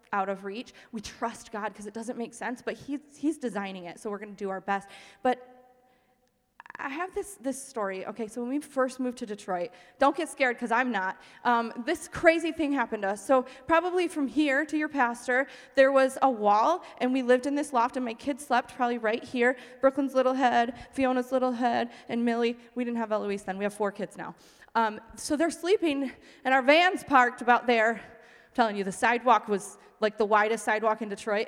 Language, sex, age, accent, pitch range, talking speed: English, female, 20-39, American, 220-290 Hz, 215 wpm